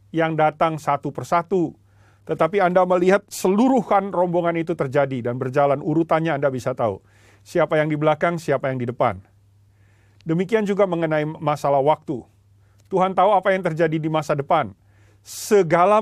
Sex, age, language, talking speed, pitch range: male, 40-59, Indonesian, 145 wpm, 105-180 Hz